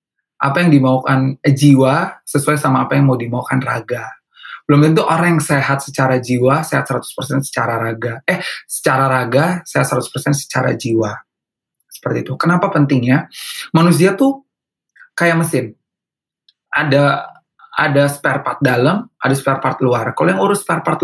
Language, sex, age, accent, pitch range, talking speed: Indonesian, male, 20-39, native, 130-150 Hz, 145 wpm